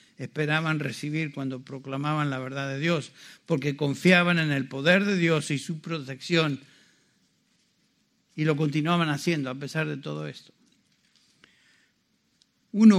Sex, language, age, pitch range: male, Spanish, 60-79, 135-160 Hz